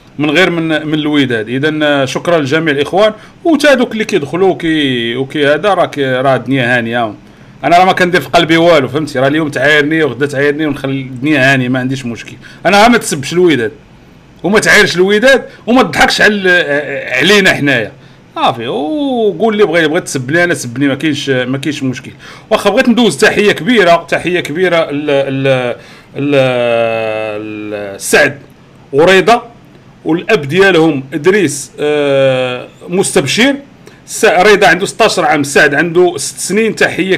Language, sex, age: Arabic, male, 40-59